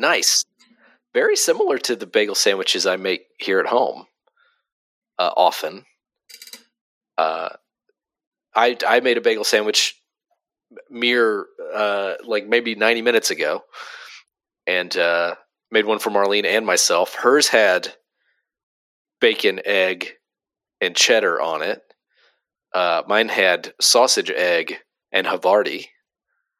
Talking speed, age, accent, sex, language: 115 wpm, 40-59, American, male, English